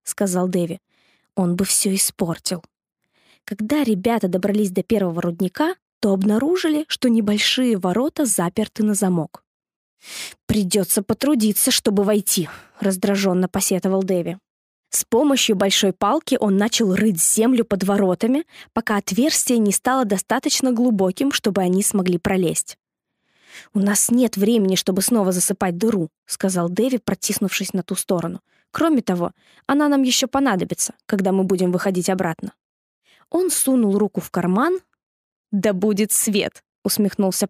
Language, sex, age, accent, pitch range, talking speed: Russian, female, 20-39, native, 190-245 Hz, 130 wpm